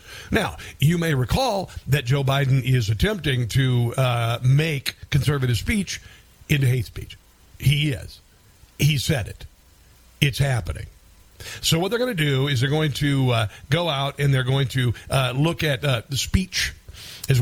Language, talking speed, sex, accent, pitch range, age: English, 165 wpm, male, American, 125-155 Hz, 50-69